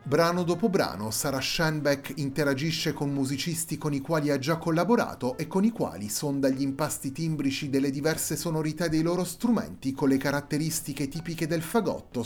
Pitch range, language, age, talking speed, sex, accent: 140-170 Hz, Italian, 30-49, 165 wpm, male, native